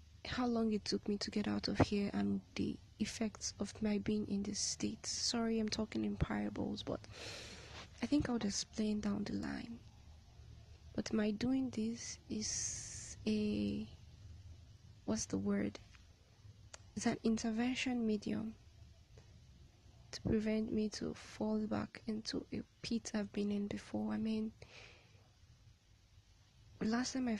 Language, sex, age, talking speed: English, female, 20-39, 140 wpm